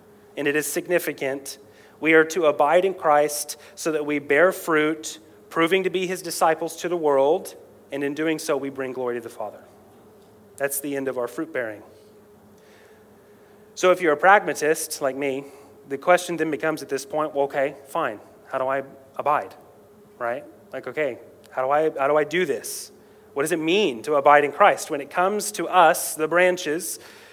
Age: 30-49